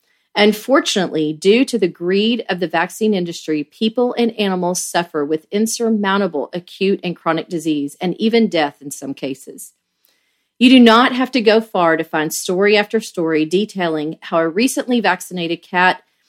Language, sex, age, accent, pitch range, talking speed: English, female, 40-59, American, 160-215 Hz, 160 wpm